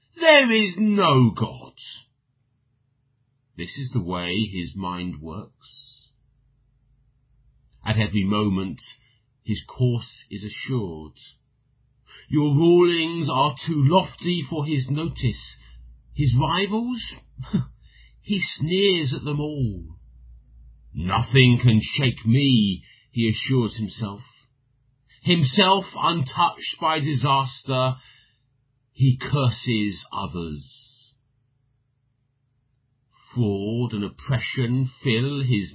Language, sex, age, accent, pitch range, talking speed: English, male, 50-69, British, 115-140 Hz, 85 wpm